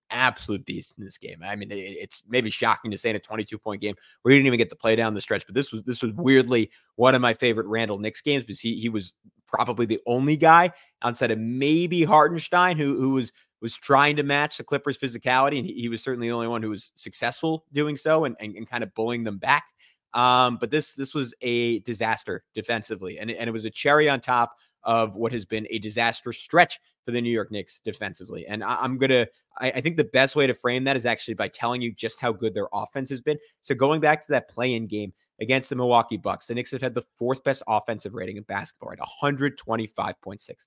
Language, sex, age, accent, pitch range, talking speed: English, male, 30-49, American, 110-135 Hz, 240 wpm